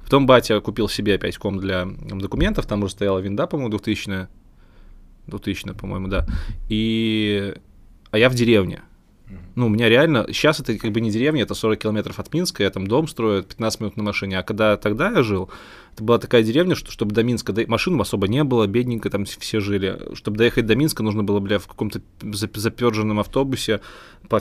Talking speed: 195 wpm